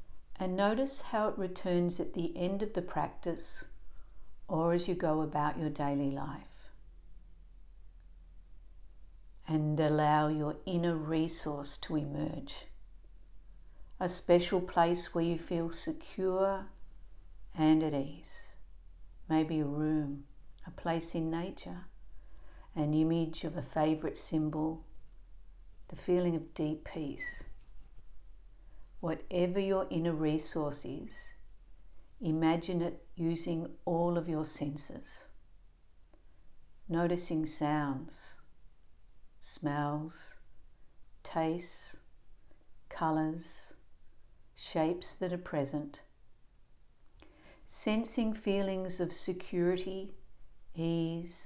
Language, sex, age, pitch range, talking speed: English, female, 60-79, 105-170 Hz, 95 wpm